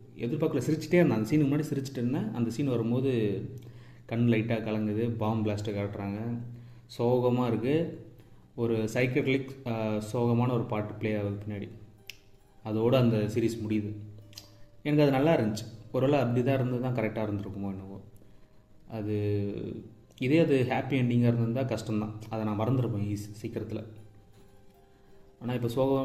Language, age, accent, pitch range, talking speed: English, 30-49, Indian, 105-130 Hz, 115 wpm